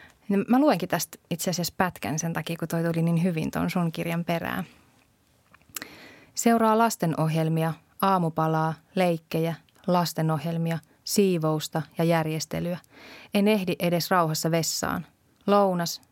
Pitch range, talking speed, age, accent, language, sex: 155-180 Hz, 120 wpm, 20-39, native, Finnish, female